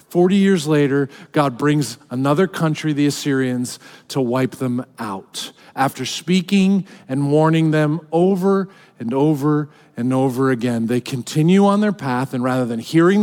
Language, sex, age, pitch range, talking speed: English, male, 40-59, 150-200 Hz, 150 wpm